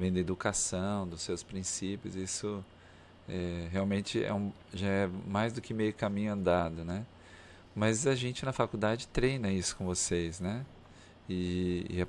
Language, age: Portuguese, 40-59